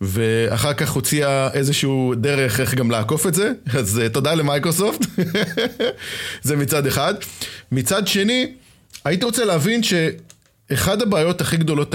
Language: Hebrew